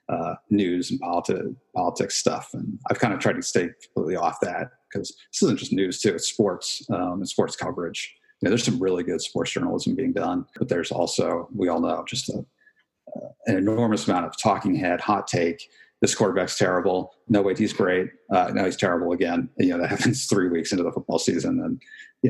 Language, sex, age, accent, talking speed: English, male, 40-59, American, 215 wpm